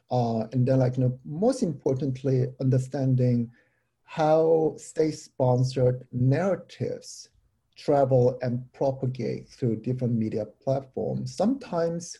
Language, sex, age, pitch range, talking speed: English, male, 50-69, 120-140 Hz, 90 wpm